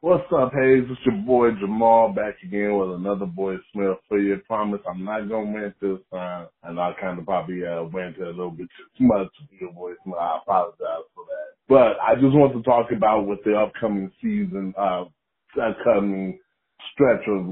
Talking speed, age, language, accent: 200 wpm, 20-39, English, American